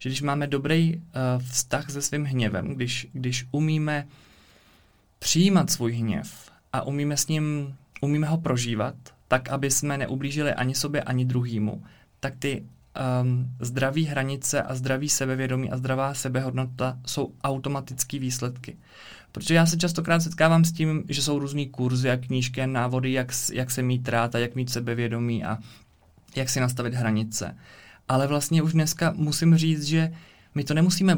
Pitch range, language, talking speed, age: 125-150 Hz, Czech, 160 wpm, 20-39